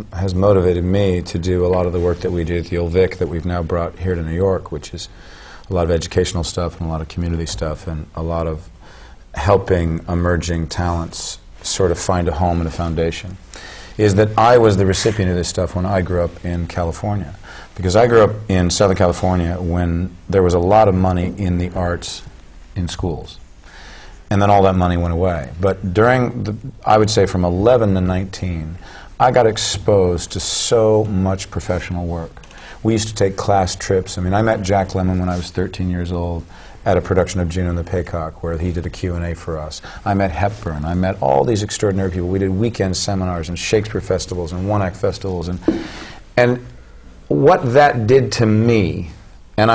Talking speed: 210 wpm